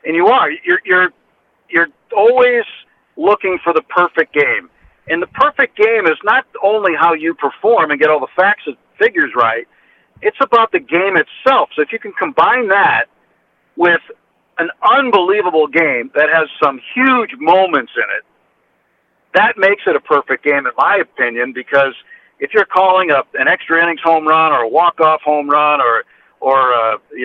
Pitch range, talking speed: 150-215 Hz, 175 wpm